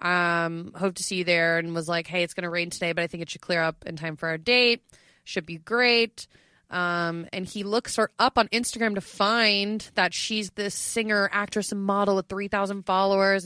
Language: English